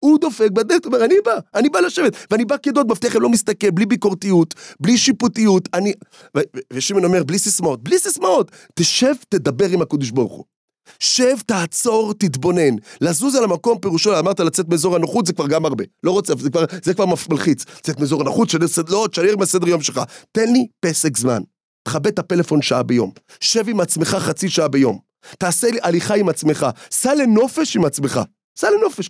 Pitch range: 150-215 Hz